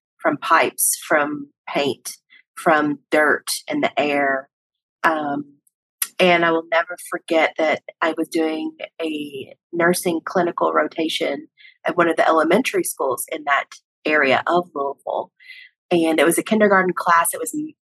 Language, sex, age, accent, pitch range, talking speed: English, female, 30-49, American, 165-220 Hz, 140 wpm